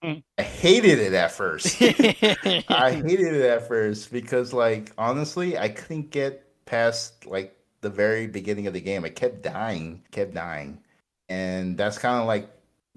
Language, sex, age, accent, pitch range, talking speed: English, male, 30-49, American, 95-125 Hz, 160 wpm